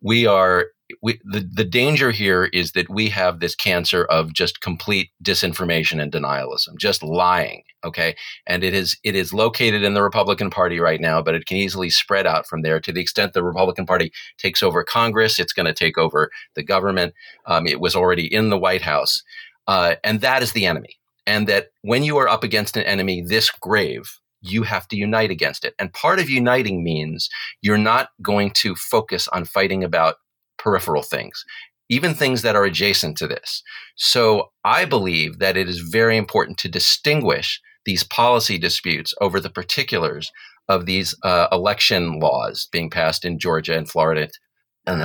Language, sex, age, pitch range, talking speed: English, male, 40-59, 90-115 Hz, 185 wpm